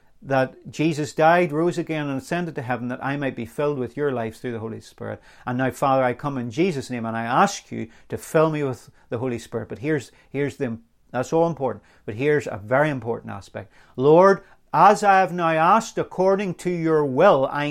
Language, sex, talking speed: English, male, 215 wpm